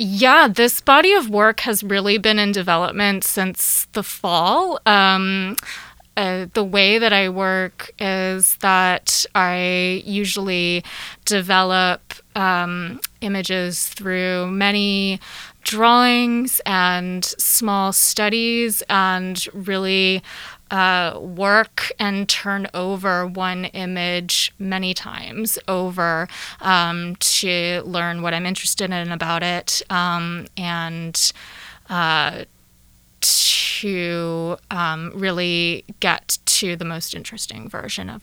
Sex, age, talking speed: female, 20-39, 105 wpm